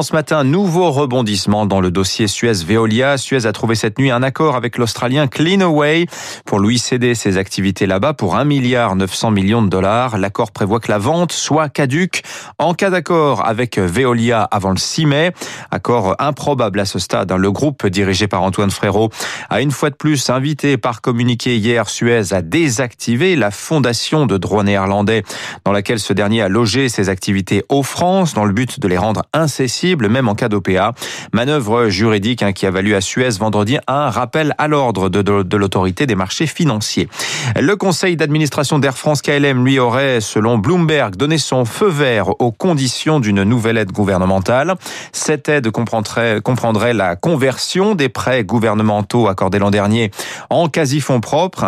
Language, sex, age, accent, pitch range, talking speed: French, male, 30-49, French, 105-145 Hz, 170 wpm